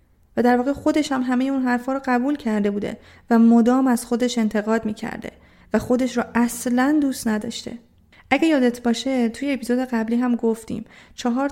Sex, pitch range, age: female, 220-255 Hz, 30-49